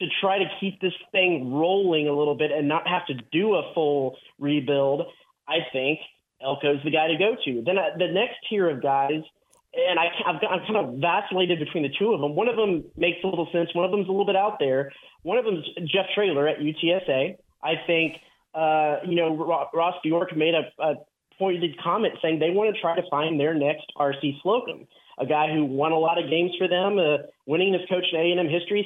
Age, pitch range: 30-49, 155-185 Hz